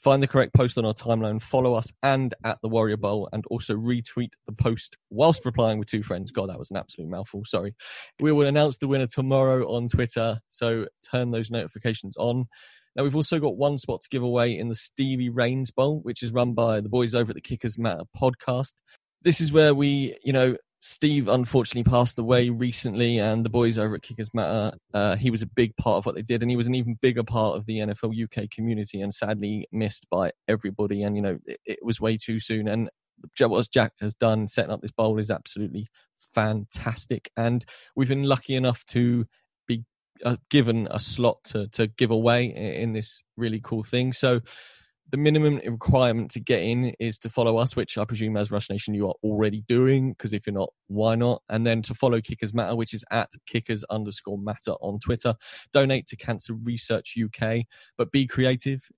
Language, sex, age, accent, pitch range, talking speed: English, male, 10-29, British, 110-125 Hz, 210 wpm